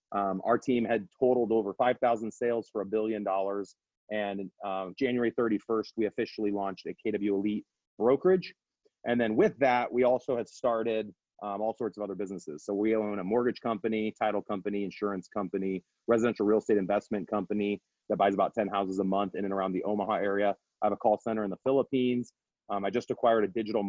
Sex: male